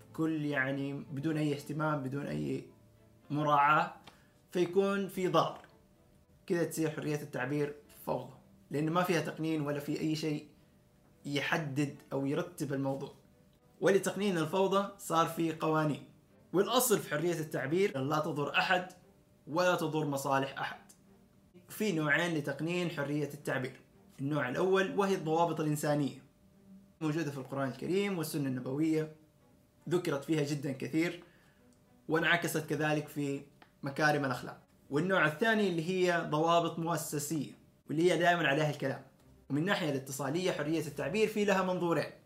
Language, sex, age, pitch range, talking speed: Arabic, male, 20-39, 145-175 Hz, 125 wpm